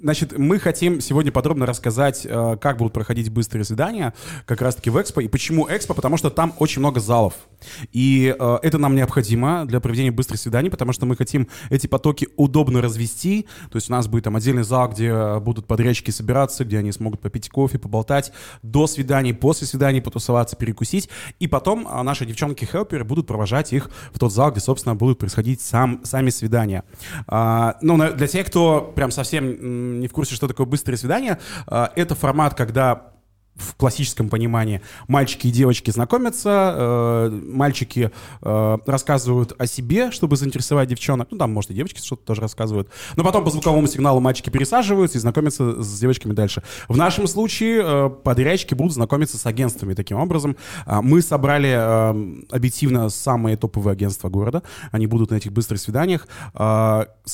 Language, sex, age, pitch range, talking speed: Russian, male, 20-39, 115-145 Hz, 165 wpm